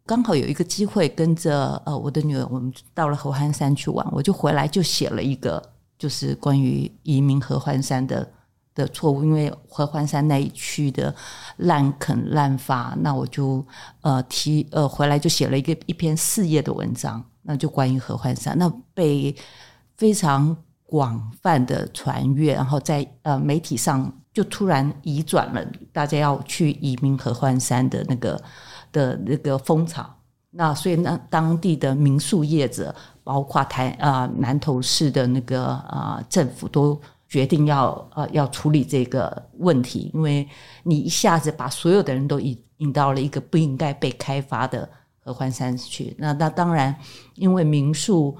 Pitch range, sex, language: 130-155 Hz, female, Chinese